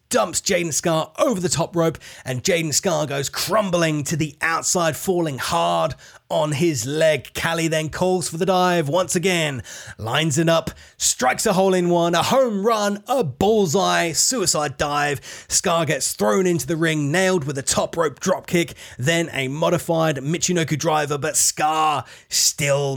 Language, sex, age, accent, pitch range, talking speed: English, male, 30-49, British, 140-175 Hz, 165 wpm